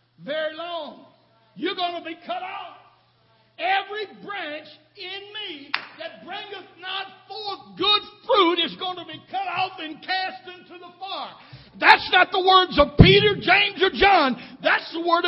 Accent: American